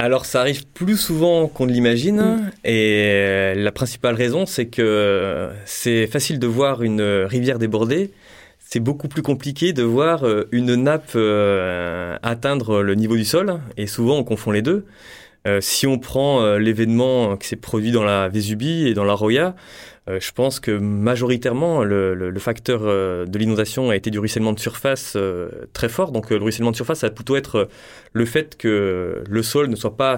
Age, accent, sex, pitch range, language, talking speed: 20-39, French, male, 105-135 Hz, French, 175 wpm